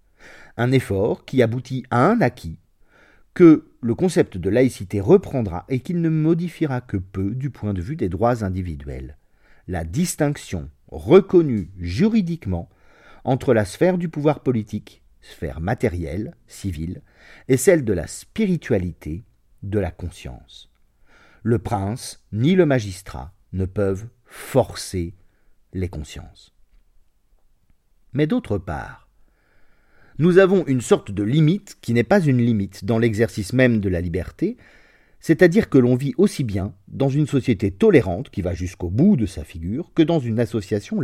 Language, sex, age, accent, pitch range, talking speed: French, male, 40-59, French, 90-135 Hz, 145 wpm